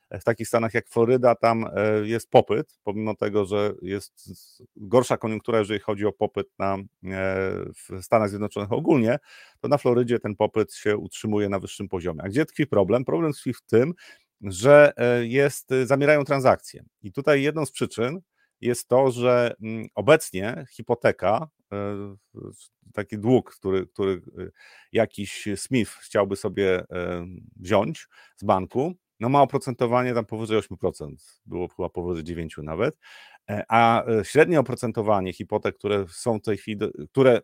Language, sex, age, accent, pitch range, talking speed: Polish, male, 40-59, native, 100-125 Hz, 135 wpm